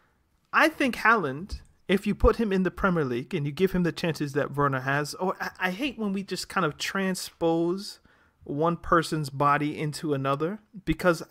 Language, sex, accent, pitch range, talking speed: English, male, American, 140-175 Hz, 190 wpm